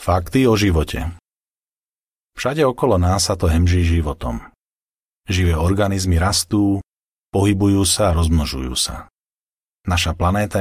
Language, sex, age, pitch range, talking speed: Slovak, male, 40-59, 85-105 Hz, 115 wpm